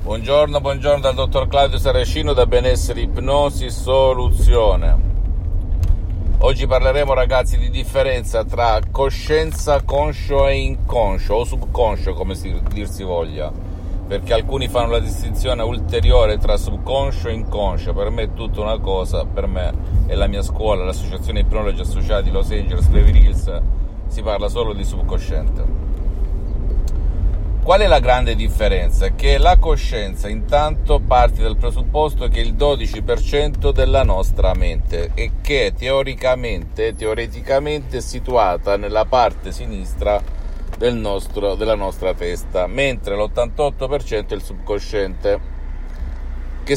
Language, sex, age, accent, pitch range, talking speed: Italian, male, 50-69, native, 85-115 Hz, 125 wpm